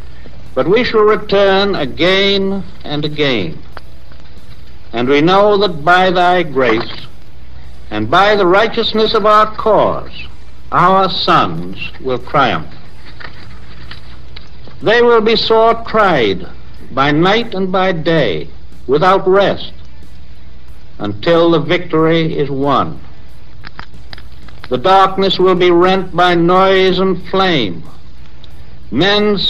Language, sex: English, male